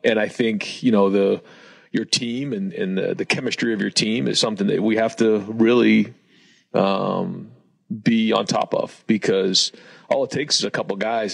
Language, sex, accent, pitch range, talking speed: English, male, American, 100-120 Hz, 195 wpm